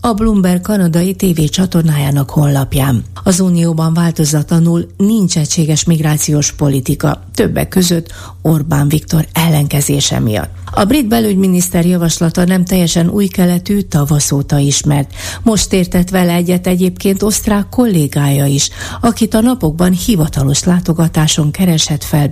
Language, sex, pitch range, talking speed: Hungarian, female, 145-185 Hz, 120 wpm